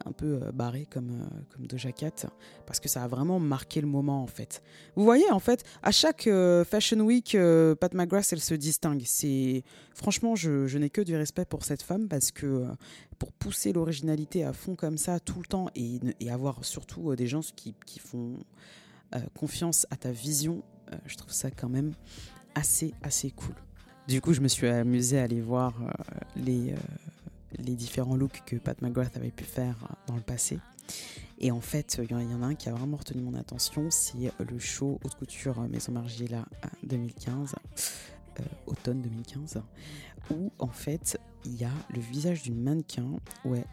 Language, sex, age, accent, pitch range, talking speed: French, female, 20-39, French, 125-160 Hz, 195 wpm